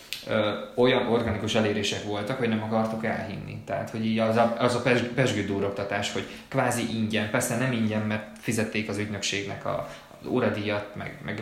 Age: 20-39